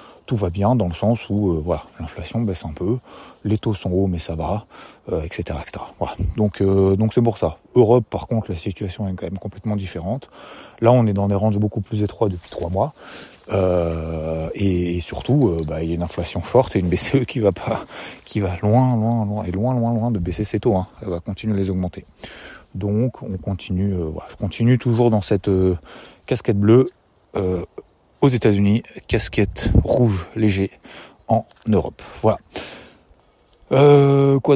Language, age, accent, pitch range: French, 30-49, French, 90-110 Hz